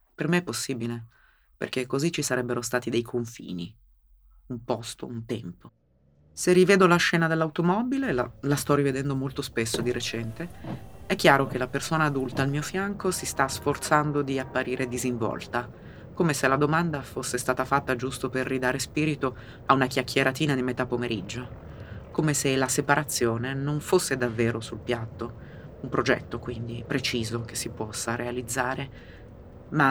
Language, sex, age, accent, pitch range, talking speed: Italian, female, 30-49, native, 115-145 Hz, 155 wpm